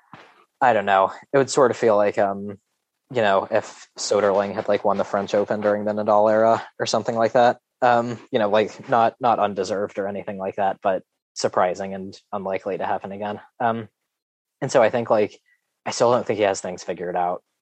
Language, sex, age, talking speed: English, male, 20-39, 210 wpm